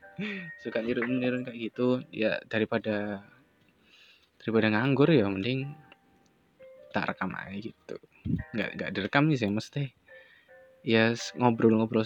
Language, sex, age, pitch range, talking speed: Indonesian, male, 20-39, 105-130 Hz, 105 wpm